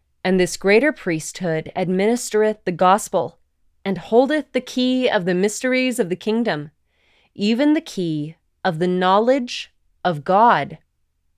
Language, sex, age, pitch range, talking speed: English, female, 20-39, 180-250 Hz, 130 wpm